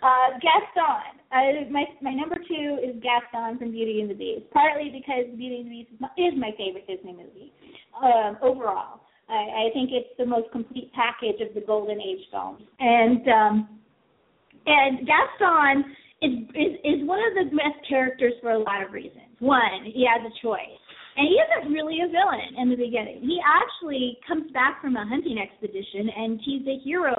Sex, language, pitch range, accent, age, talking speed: female, English, 240-325 Hz, American, 30-49, 190 wpm